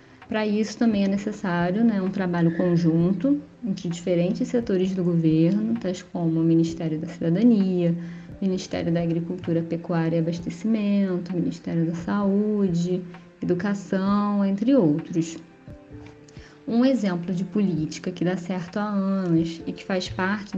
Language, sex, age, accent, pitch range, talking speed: Portuguese, female, 10-29, Brazilian, 170-200 Hz, 130 wpm